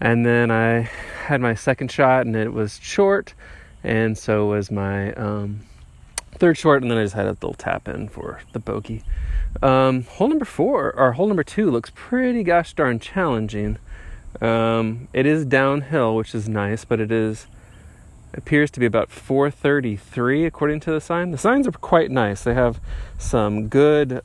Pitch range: 105-140 Hz